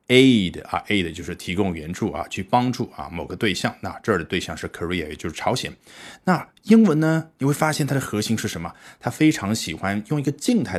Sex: male